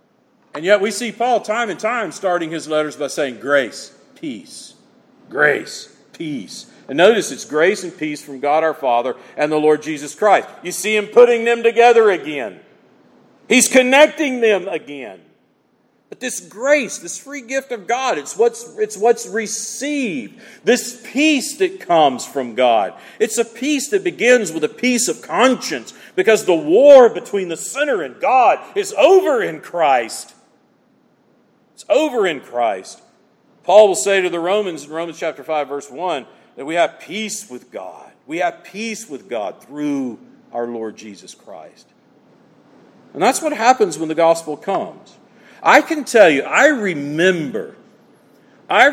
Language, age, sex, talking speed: English, 50-69, male, 160 wpm